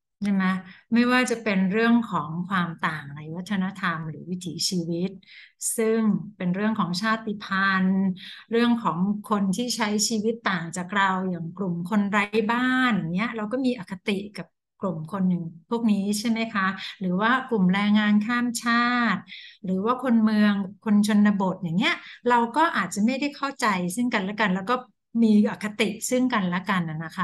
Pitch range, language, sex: 185-235 Hz, Thai, female